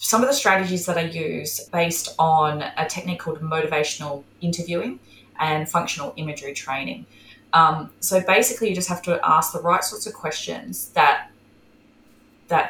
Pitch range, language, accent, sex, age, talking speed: 160-195 Hz, English, Australian, female, 20-39, 155 wpm